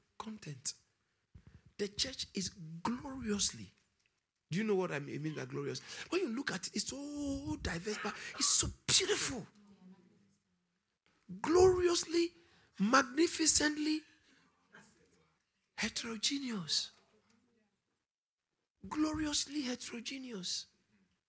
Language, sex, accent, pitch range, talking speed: English, male, Nigerian, 190-300 Hz, 85 wpm